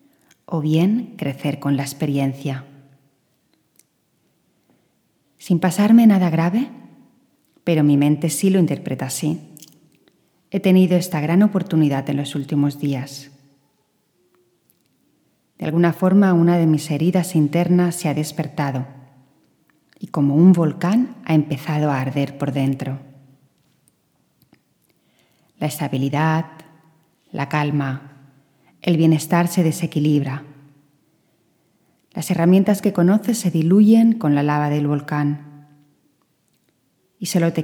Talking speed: 110 wpm